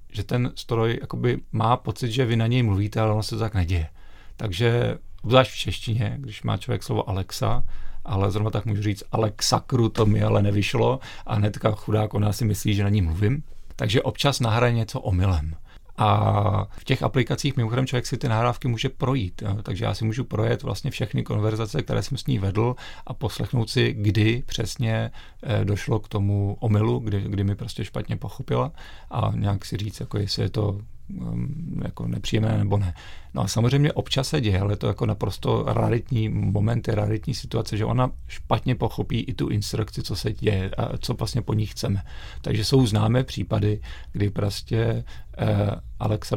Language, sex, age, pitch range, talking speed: Czech, male, 40-59, 100-120 Hz, 180 wpm